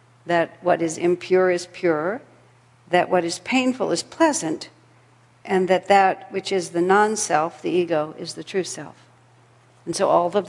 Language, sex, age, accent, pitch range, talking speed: English, female, 60-79, American, 165-190 Hz, 165 wpm